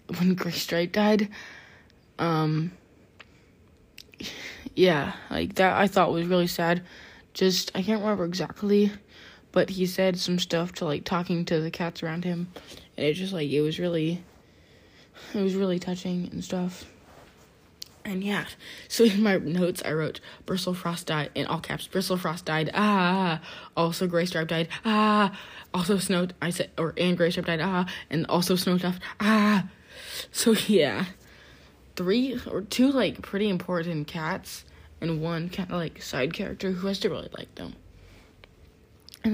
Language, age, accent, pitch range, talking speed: English, 20-39, American, 160-195 Hz, 160 wpm